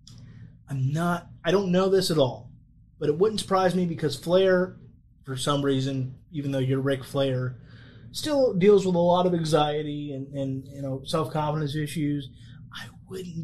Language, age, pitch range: English, 30-49, 140-180 Hz